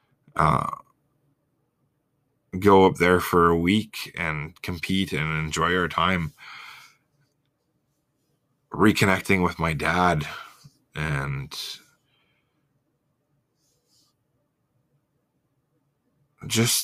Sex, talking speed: male, 70 wpm